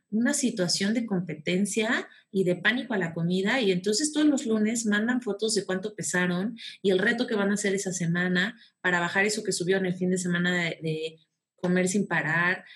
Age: 30-49